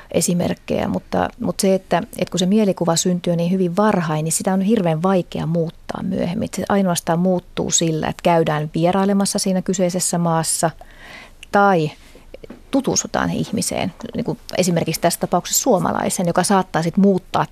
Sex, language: female, Finnish